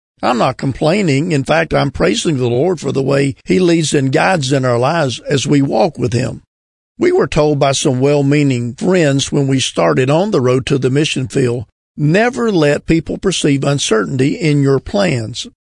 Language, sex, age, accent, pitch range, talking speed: English, male, 50-69, American, 135-160 Hz, 190 wpm